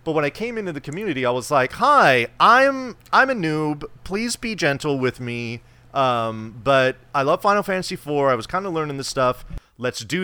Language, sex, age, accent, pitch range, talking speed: English, male, 30-49, American, 115-155 Hz, 210 wpm